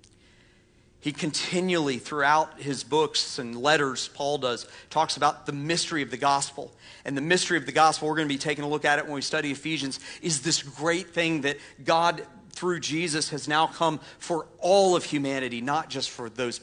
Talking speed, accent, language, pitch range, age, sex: 195 wpm, American, English, 120-160 Hz, 40-59, male